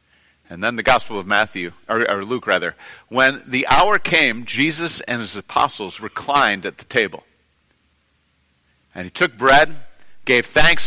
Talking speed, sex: 155 wpm, male